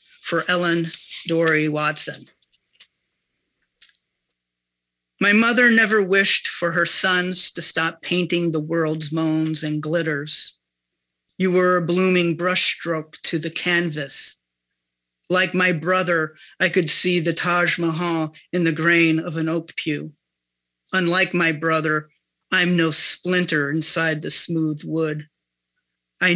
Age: 40-59